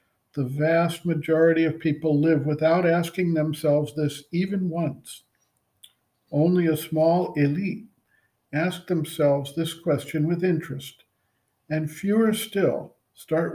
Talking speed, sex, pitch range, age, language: 115 wpm, male, 140-175 Hz, 50-69, English